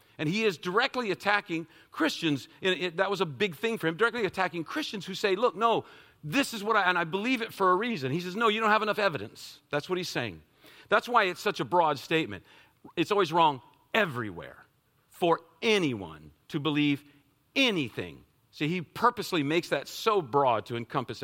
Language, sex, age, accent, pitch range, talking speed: English, male, 50-69, American, 145-210 Hz, 200 wpm